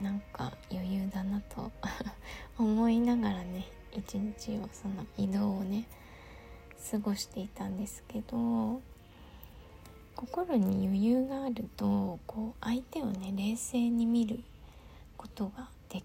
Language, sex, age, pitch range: Japanese, female, 20-39, 195-235 Hz